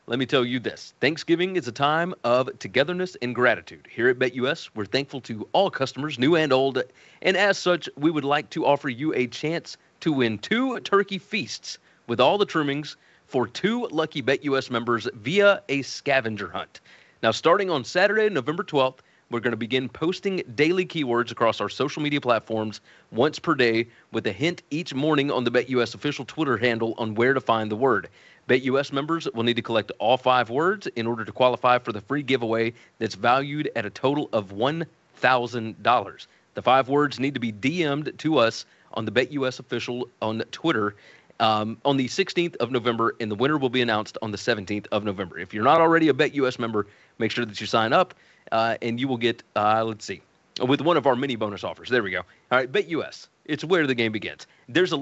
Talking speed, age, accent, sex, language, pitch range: 205 wpm, 30-49, American, male, English, 115-155 Hz